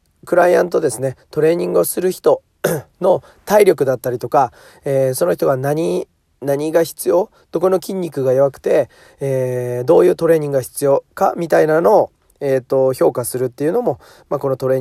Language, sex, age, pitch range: Japanese, male, 40-59, 120-155 Hz